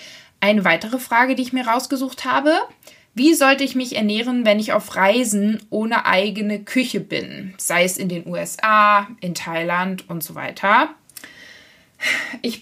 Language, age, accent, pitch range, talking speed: German, 20-39, German, 205-265 Hz, 150 wpm